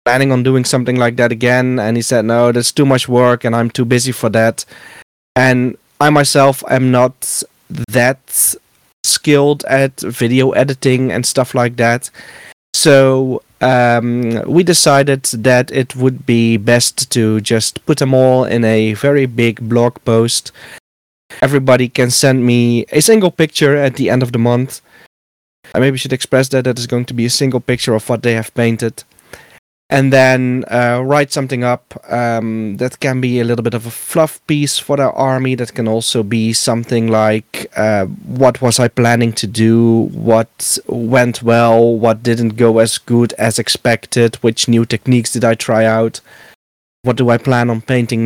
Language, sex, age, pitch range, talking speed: English, male, 20-39, 115-130 Hz, 175 wpm